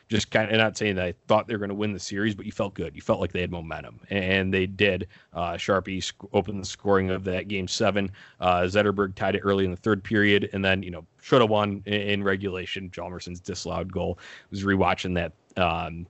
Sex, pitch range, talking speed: male, 90-100 Hz, 240 wpm